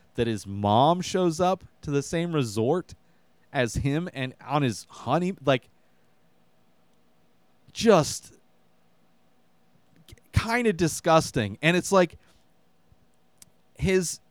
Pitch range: 115-160 Hz